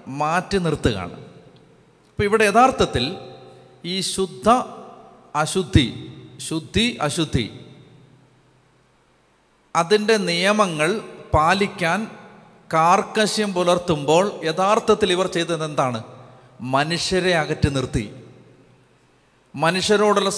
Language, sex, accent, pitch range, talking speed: Malayalam, male, native, 150-200 Hz, 65 wpm